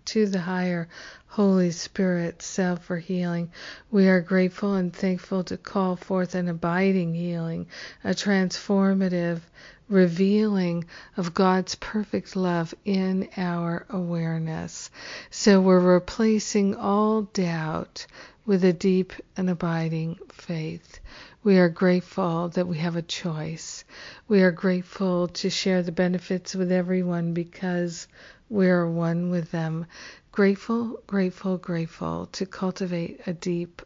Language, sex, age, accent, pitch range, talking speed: English, female, 50-69, American, 170-195 Hz, 125 wpm